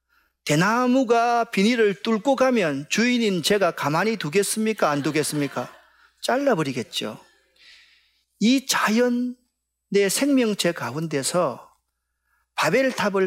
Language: Korean